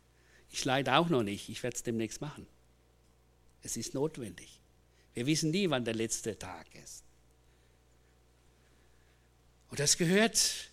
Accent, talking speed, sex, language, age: German, 135 wpm, male, German, 60-79